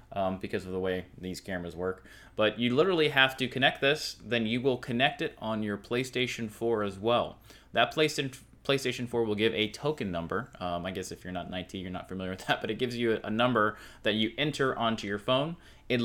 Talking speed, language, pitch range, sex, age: 220 wpm, English, 100-120 Hz, male, 20-39